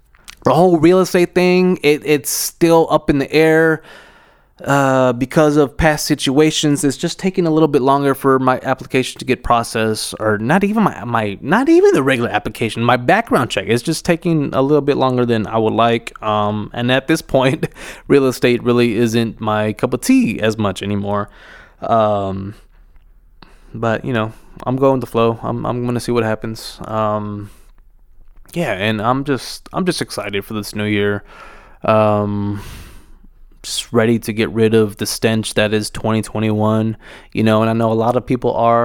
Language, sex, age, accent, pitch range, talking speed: English, male, 20-39, American, 105-140 Hz, 180 wpm